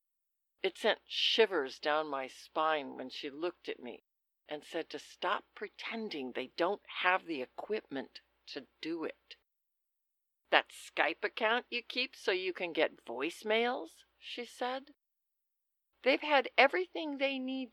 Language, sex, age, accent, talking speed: English, female, 60-79, American, 140 wpm